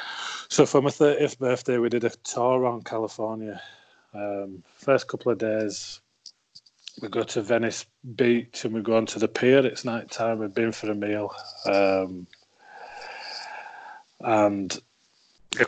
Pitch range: 105-135 Hz